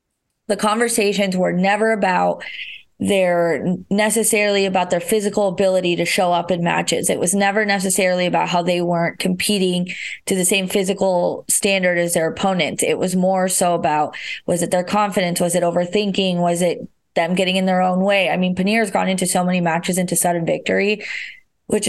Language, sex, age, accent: English, female, 20-39, American